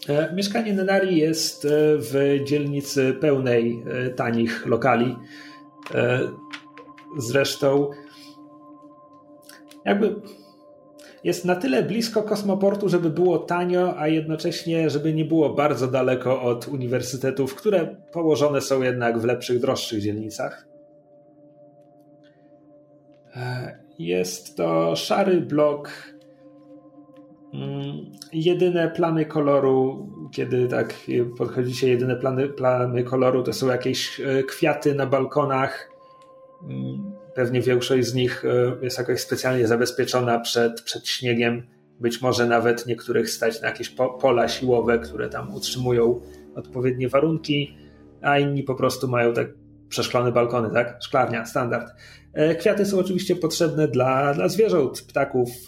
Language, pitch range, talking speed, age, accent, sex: Polish, 125-155 Hz, 105 wpm, 40-59, native, male